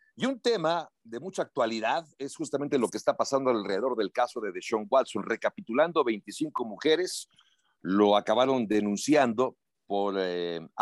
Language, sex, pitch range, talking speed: Spanish, male, 105-150 Hz, 145 wpm